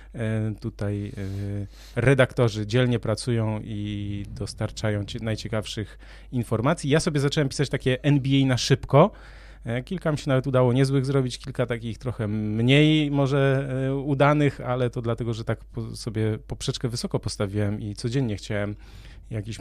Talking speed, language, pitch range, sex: 135 wpm, Polish, 105-135 Hz, male